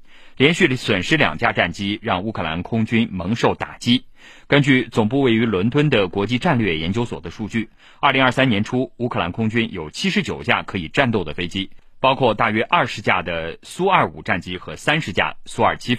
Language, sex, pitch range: Chinese, male, 95-130 Hz